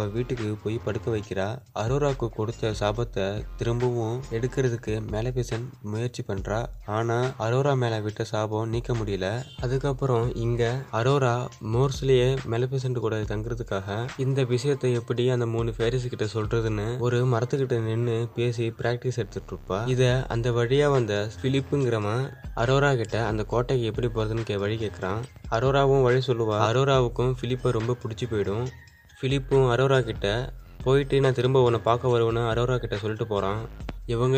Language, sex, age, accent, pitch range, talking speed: Tamil, male, 20-39, native, 110-125 Hz, 95 wpm